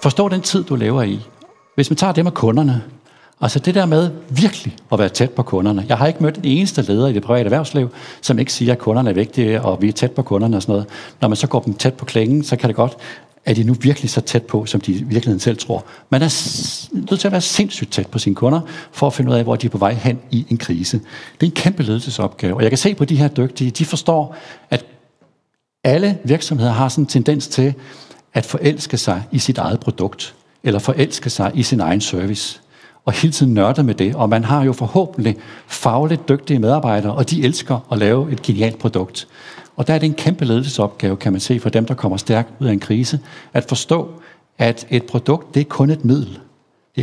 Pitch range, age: 110-145 Hz, 60-79